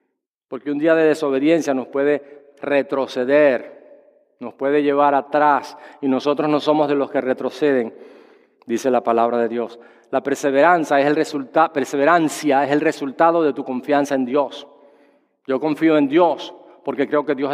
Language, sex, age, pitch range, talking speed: English, male, 40-59, 140-175 Hz, 150 wpm